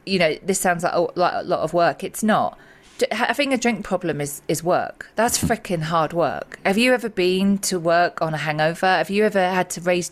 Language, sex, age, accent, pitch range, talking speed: English, female, 40-59, British, 170-215 Hz, 225 wpm